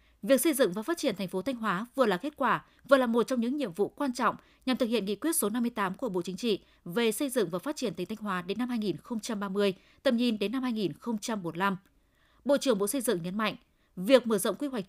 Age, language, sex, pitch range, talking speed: 20-39, Vietnamese, female, 200-260 Hz, 255 wpm